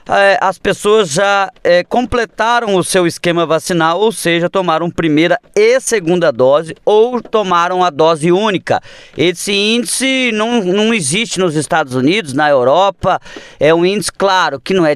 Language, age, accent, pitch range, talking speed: Portuguese, 20-39, Brazilian, 155-200 Hz, 155 wpm